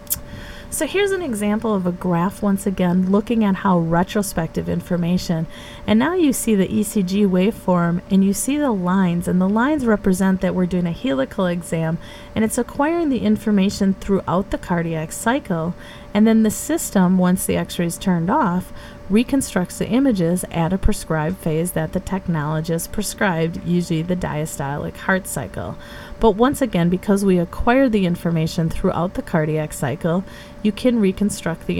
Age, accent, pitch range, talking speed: 30-49, American, 165-215 Hz, 160 wpm